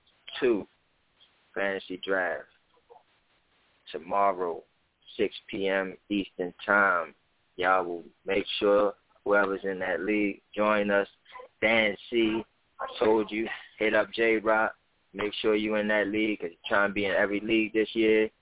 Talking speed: 140 wpm